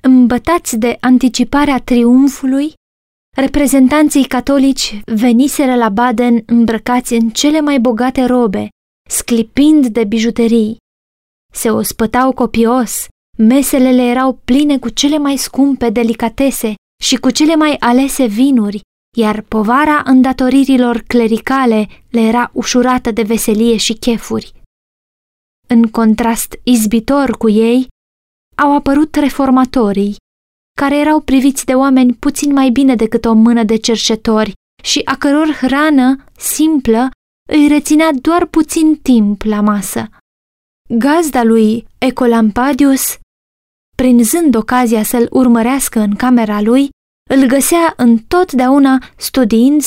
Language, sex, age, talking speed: Romanian, female, 20-39, 110 wpm